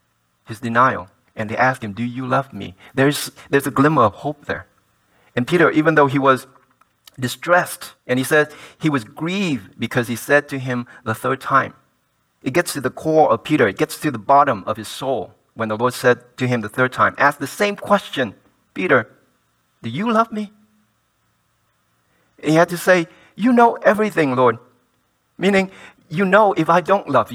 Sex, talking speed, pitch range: male, 190 wpm, 115-160 Hz